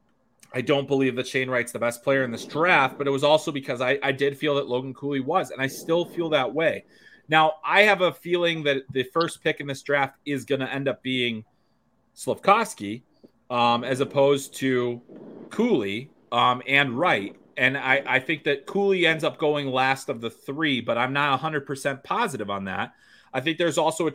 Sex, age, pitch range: male, 30-49, 115-150 Hz